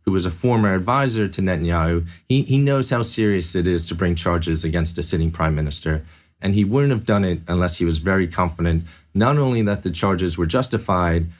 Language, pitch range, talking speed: English, 85-110 Hz, 210 wpm